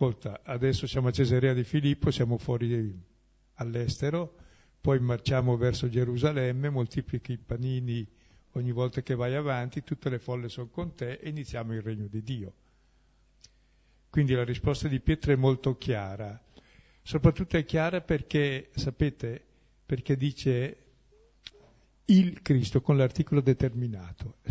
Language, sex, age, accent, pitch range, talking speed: Italian, male, 50-69, native, 120-150 Hz, 130 wpm